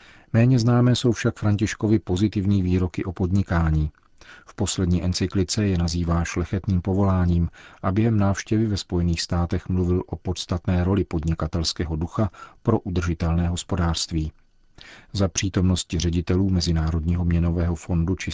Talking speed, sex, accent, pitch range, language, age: 125 wpm, male, native, 85-95 Hz, Czech, 40-59